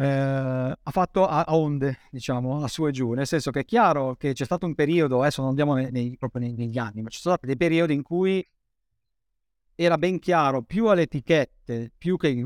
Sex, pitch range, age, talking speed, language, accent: male, 120-150 Hz, 50-69, 210 wpm, Italian, native